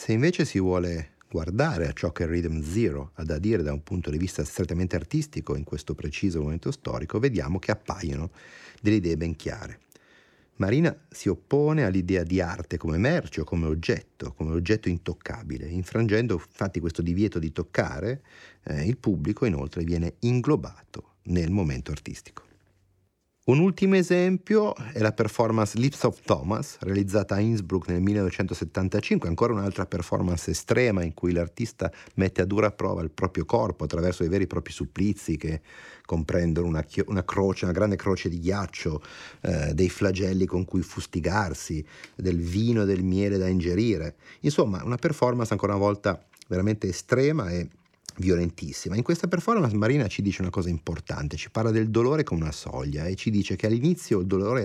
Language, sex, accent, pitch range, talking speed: Italian, male, native, 85-110 Hz, 165 wpm